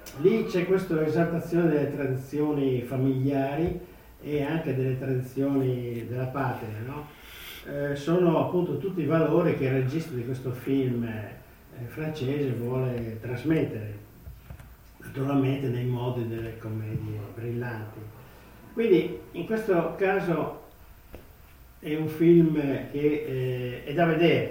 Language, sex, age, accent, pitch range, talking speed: Italian, male, 50-69, native, 120-150 Hz, 120 wpm